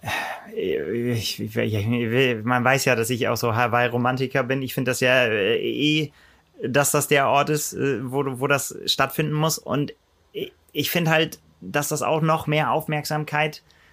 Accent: German